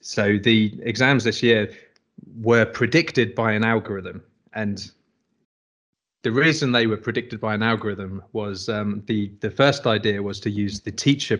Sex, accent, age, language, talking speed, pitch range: male, British, 20-39, English, 160 wpm, 105-120 Hz